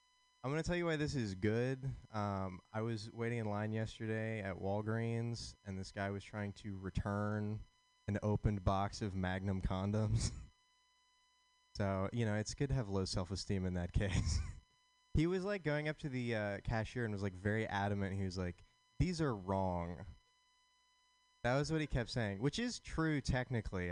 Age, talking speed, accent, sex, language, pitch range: 20-39, 180 wpm, American, male, English, 100-135 Hz